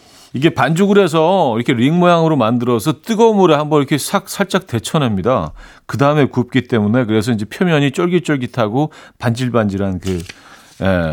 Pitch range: 90-140 Hz